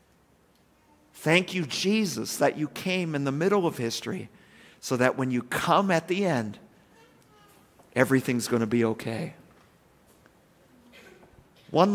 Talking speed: 125 wpm